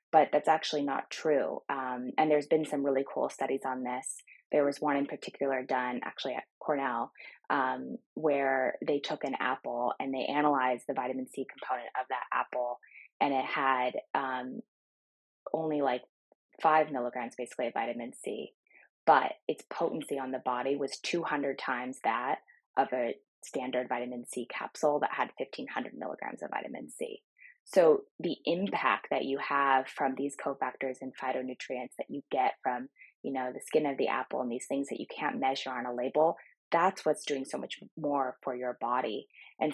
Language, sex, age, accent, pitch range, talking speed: English, female, 20-39, American, 130-145 Hz, 175 wpm